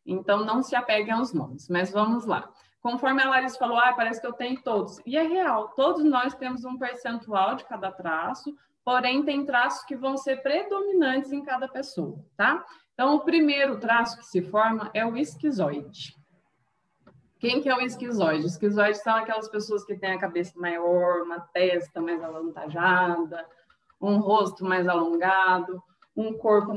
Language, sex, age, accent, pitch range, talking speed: Portuguese, female, 20-39, Brazilian, 185-265 Hz, 170 wpm